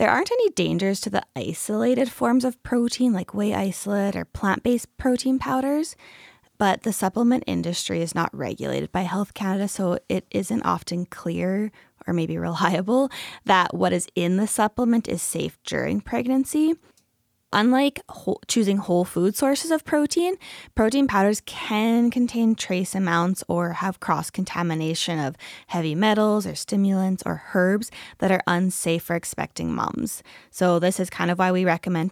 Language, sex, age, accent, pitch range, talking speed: English, female, 10-29, American, 180-245 Hz, 155 wpm